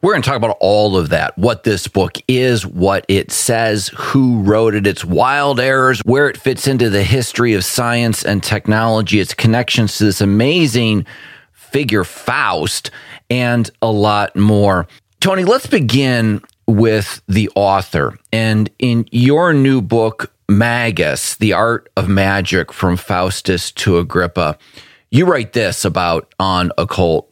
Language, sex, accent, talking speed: English, male, American, 150 wpm